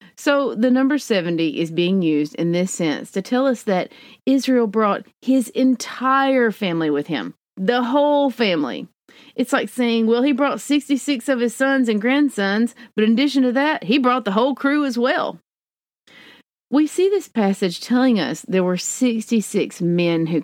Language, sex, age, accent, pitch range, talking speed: English, female, 40-59, American, 180-260 Hz, 175 wpm